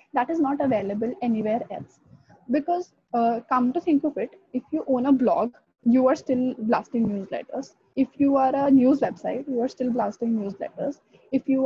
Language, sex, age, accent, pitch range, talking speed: English, female, 10-29, Indian, 220-270 Hz, 185 wpm